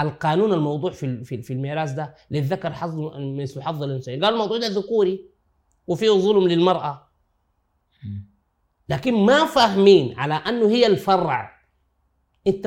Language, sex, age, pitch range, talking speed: Arabic, male, 30-49, 130-185 Hz, 130 wpm